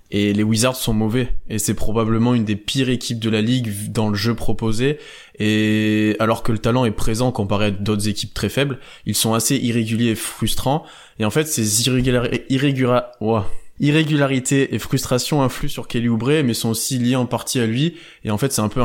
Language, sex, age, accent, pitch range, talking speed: French, male, 20-39, French, 110-130 Hz, 205 wpm